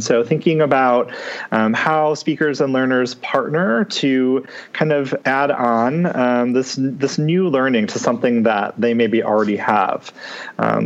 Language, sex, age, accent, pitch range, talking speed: English, male, 30-49, American, 115-150 Hz, 155 wpm